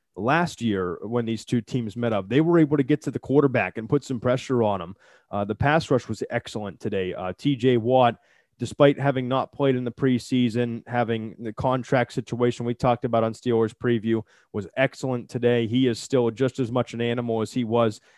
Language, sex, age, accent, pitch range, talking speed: English, male, 20-39, American, 110-135 Hz, 210 wpm